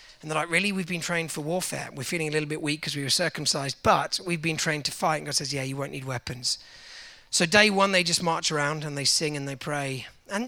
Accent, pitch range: British, 150-185 Hz